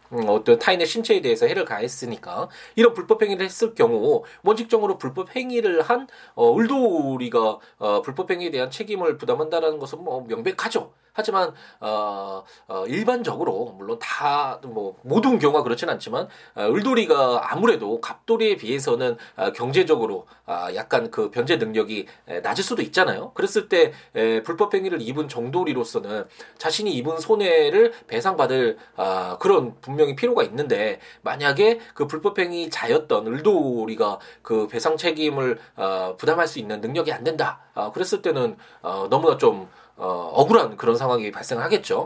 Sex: male